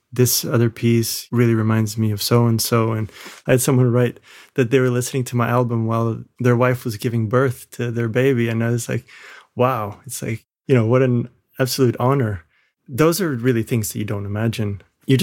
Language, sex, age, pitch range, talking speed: English, male, 20-39, 115-135 Hz, 200 wpm